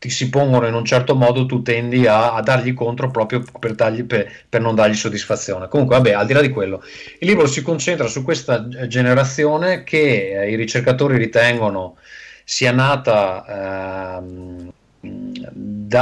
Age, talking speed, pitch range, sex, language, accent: 30-49, 165 wpm, 105-135 Hz, male, Italian, native